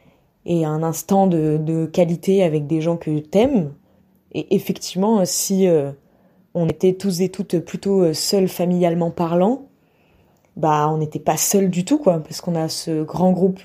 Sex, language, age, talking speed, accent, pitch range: female, French, 20-39, 170 wpm, French, 160-195 Hz